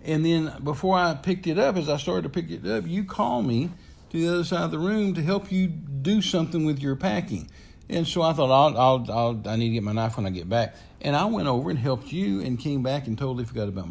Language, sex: English, male